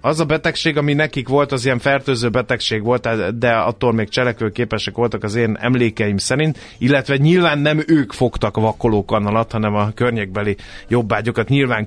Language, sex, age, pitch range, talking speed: Hungarian, male, 30-49, 105-130 Hz, 160 wpm